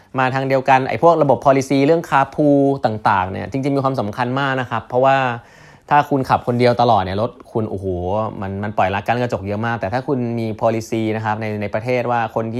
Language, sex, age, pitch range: Thai, male, 20-39, 100-135 Hz